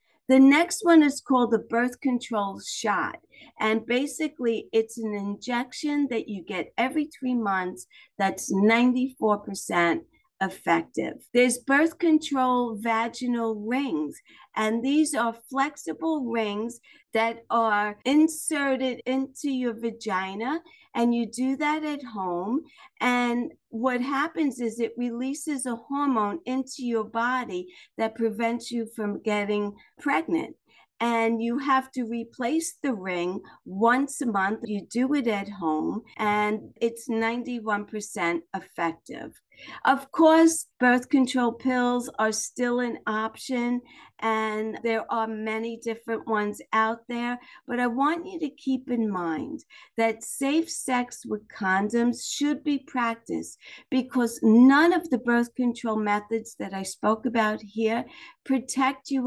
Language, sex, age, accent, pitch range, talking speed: English, female, 50-69, American, 220-275 Hz, 130 wpm